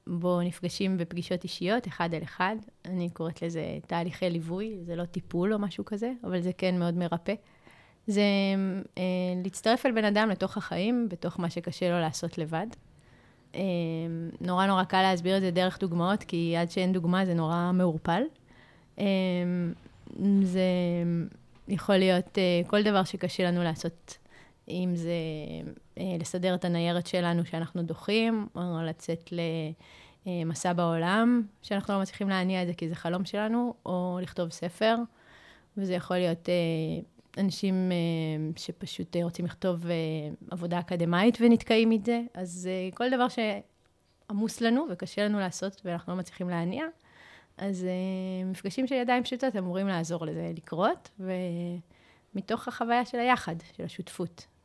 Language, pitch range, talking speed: Hebrew, 170-200 Hz, 145 wpm